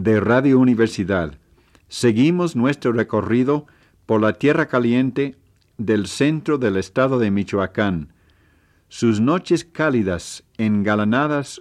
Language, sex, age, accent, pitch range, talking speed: Spanish, male, 50-69, Spanish, 100-130 Hz, 105 wpm